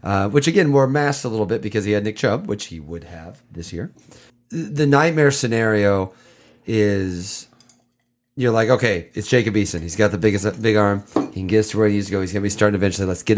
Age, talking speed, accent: 30-49, 240 wpm, American